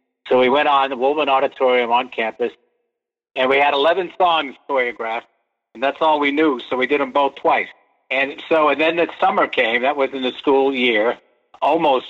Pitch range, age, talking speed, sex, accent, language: 120-155 Hz, 60-79, 200 wpm, male, American, English